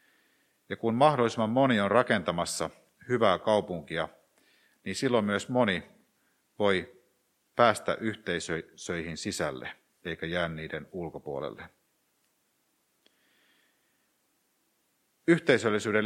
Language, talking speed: Finnish, 80 wpm